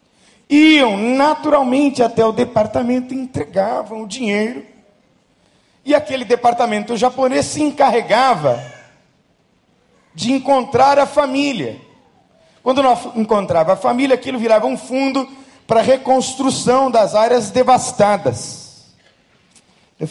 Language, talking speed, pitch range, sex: Portuguese, 100 wpm, 185-275 Hz, male